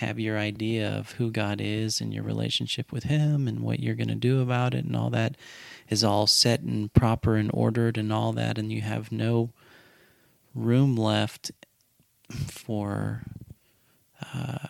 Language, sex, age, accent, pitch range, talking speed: English, male, 30-49, American, 105-125 Hz, 165 wpm